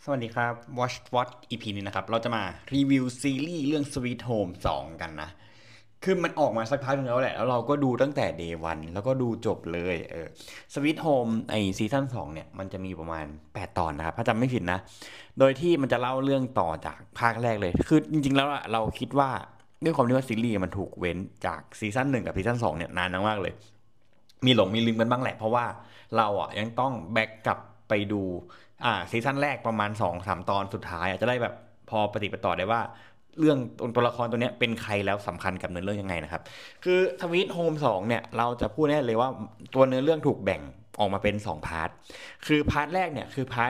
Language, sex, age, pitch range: Thai, male, 20-39, 100-130 Hz